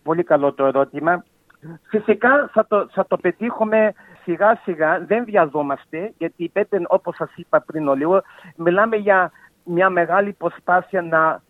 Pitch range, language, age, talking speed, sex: 165-210 Hz, Greek, 50-69, 145 wpm, male